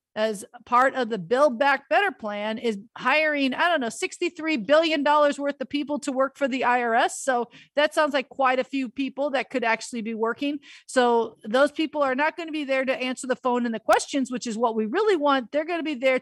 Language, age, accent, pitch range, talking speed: English, 50-69, American, 225-275 Hz, 235 wpm